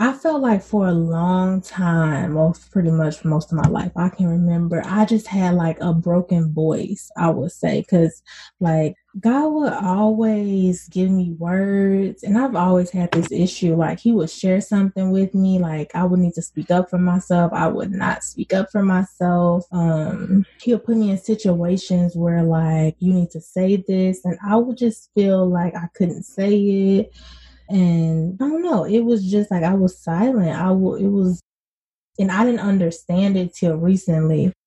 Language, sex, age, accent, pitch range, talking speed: English, female, 20-39, American, 170-205 Hz, 190 wpm